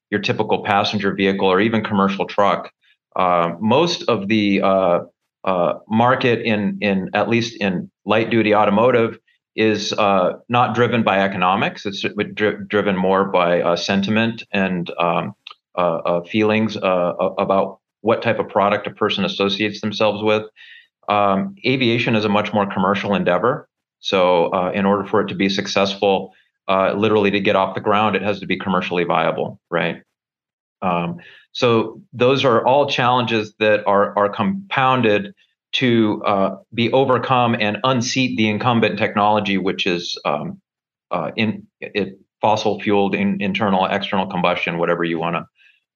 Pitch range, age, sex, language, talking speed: 95-110 Hz, 30-49, male, English, 155 wpm